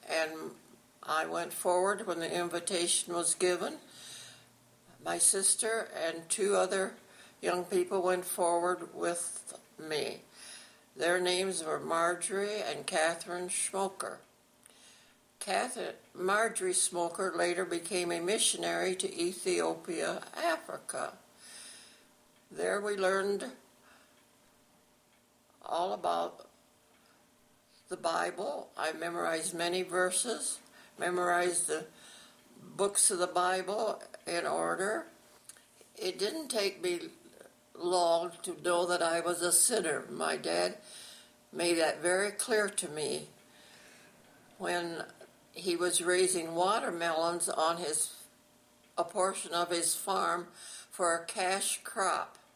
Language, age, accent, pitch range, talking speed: English, 60-79, American, 170-195 Hz, 105 wpm